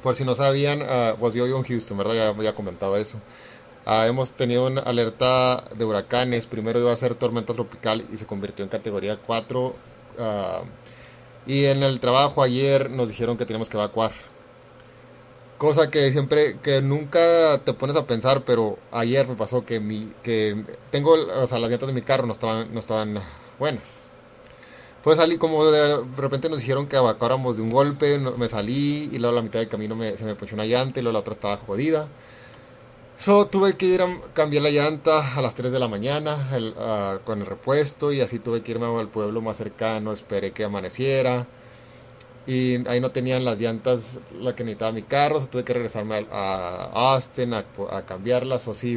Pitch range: 110-135 Hz